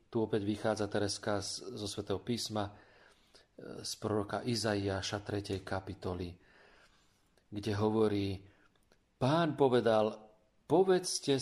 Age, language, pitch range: 40-59, Slovak, 100-125 Hz